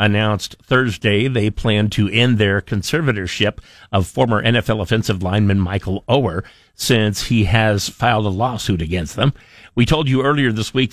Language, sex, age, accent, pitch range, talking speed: English, male, 50-69, American, 100-120 Hz, 160 wpm